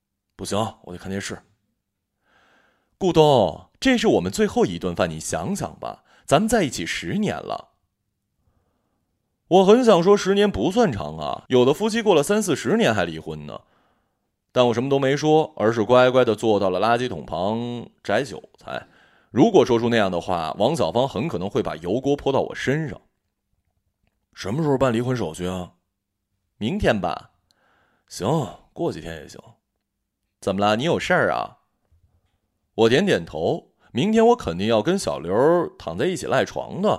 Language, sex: Chinese, male